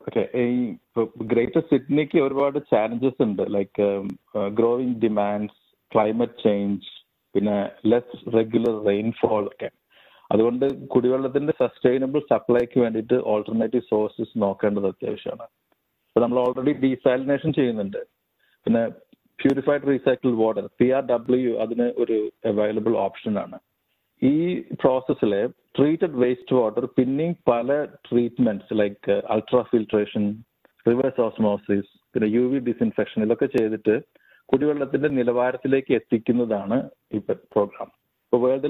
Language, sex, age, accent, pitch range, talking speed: Malayalam, male, 50-69, native, 110-130 Hz, 100 wpm